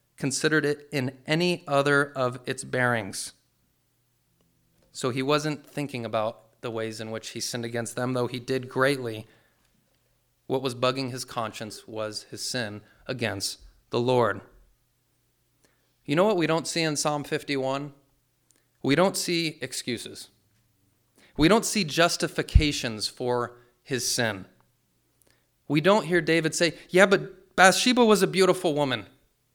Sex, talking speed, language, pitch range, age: male, 140 wpm, English, 115-155 Hz, 30-49